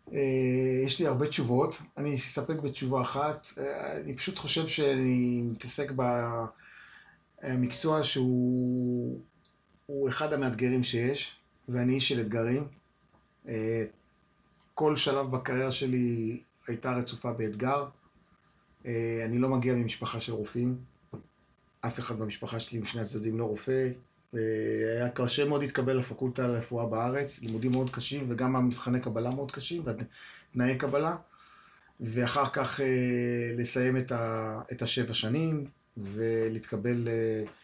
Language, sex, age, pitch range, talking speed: Hebrew, male, 30-49, 115-135 Hz, 110 wpm